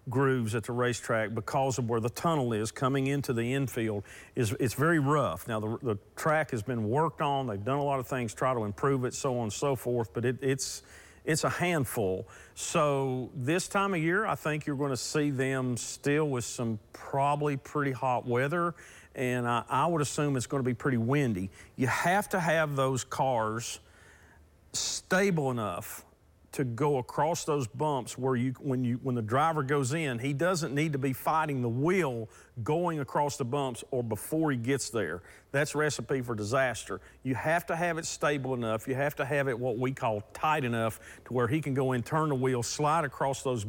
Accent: American